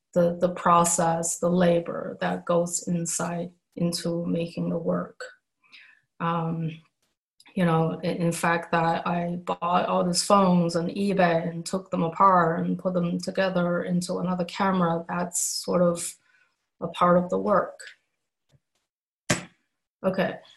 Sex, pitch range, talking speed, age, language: female, 170-180 Hz, 130 wpm, 20-39, English